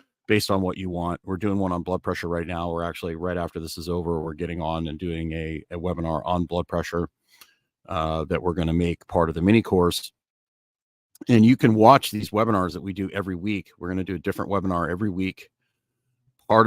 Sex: male